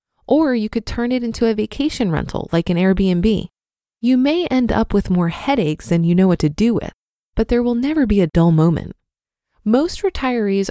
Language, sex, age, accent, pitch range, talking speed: English, female, 20-39, American, 175-240 Hz, 200 wpm